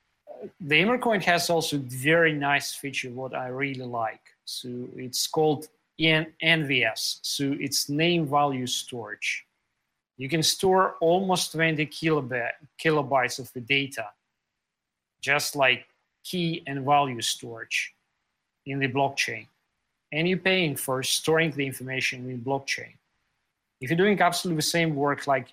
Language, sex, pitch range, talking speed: English, male, 130-160 Hz, 130 wpm